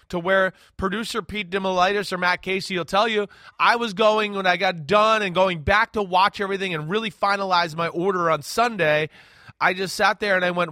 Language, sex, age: English, male, 30-49